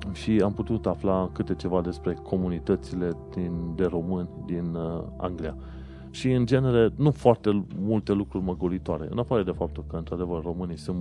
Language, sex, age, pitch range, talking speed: Romanian, male, 30-49, 75-95 Hz, 165 wpm